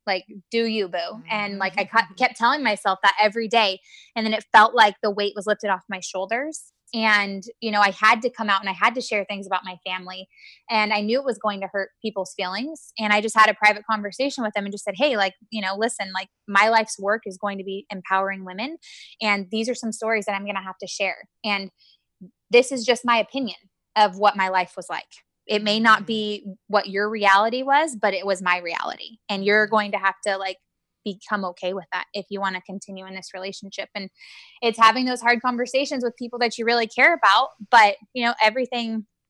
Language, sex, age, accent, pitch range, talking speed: English, female, 20-39, American, 195-235 Hz, 230 wpm